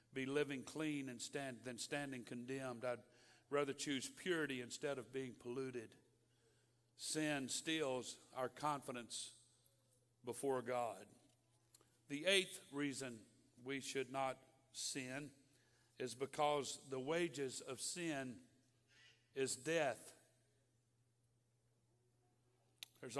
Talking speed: 100 wpm